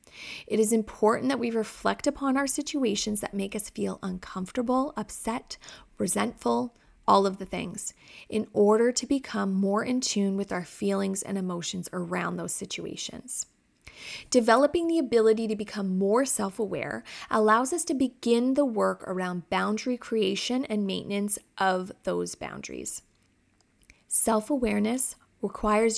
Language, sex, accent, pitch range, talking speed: English, female, American, 200-245 Hz, 135 wpm